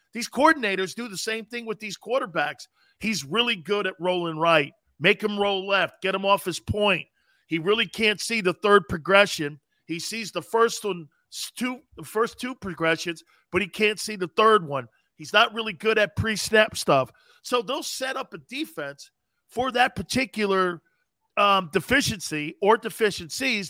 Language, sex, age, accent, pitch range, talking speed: English, male, 40-59, American, 185-255 Hz, 170 wpm